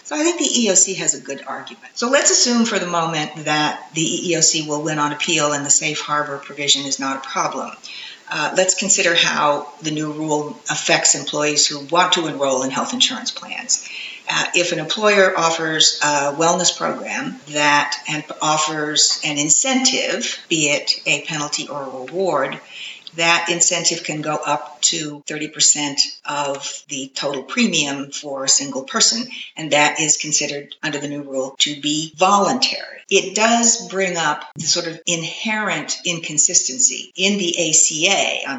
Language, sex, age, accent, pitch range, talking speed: English, female, 50-69, American, 150-175 Hz, 165 wpm